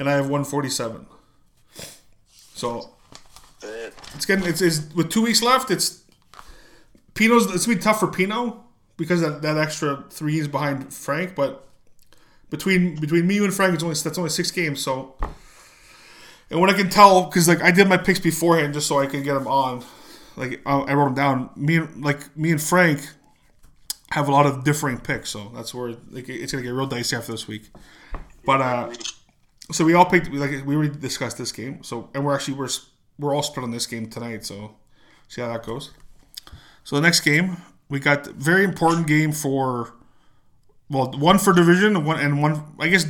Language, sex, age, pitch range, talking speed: English, male, 20-39, 125-165 Hz, 200 wpm